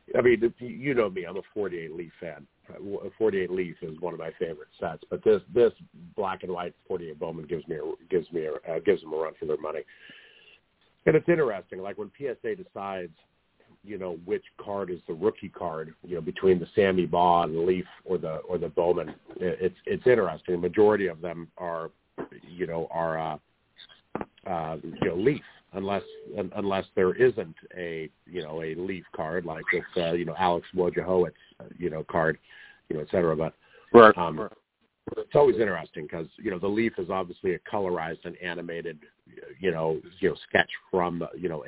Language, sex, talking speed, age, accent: English, male, 185 wpm, 50-69, American